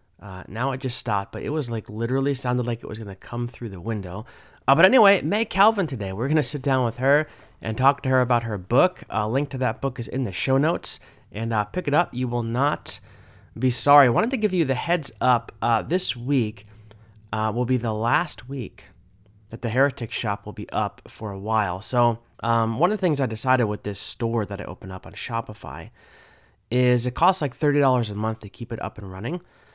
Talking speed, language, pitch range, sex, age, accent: 240 wpm, English, 105-130 Hz, male, 30-49, American